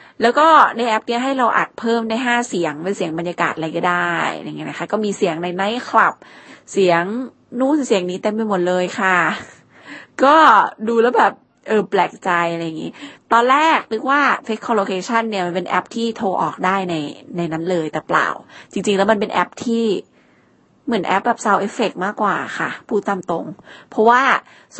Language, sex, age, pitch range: Thai, female, 20-39, 180-230 Hz